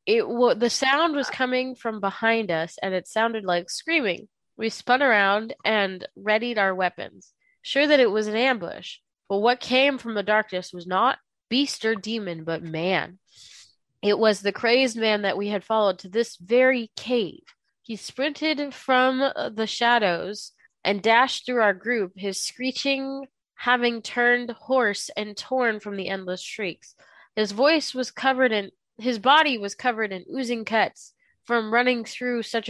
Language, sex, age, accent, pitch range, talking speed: English, female, 20-39, American, 200-255 Hz, 165 wpm